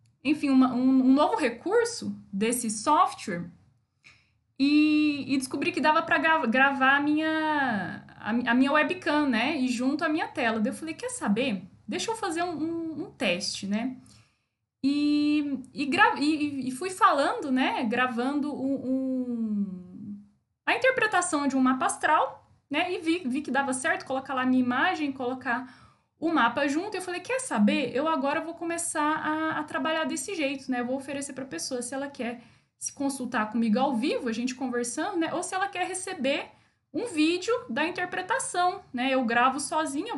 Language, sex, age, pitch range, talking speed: Portuguese, female, 10-29, 255-325 Hz, 165 wpm